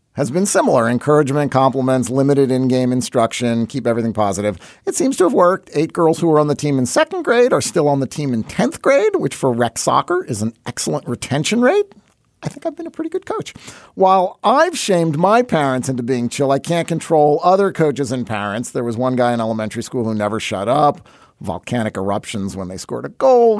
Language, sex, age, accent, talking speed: English, male, 40-59, American, 215 wpm